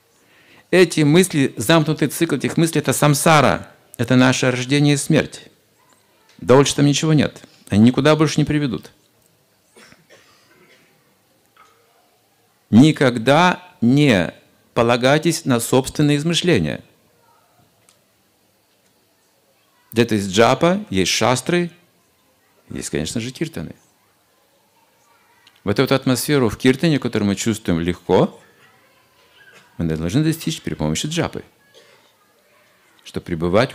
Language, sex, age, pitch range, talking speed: Russian, male, 50-69, 105-150 Hz, 95 wpm